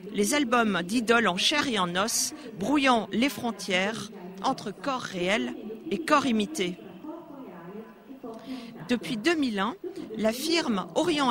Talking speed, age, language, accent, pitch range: 115 wpm, 40-59, Italian, French, 210-275 Hz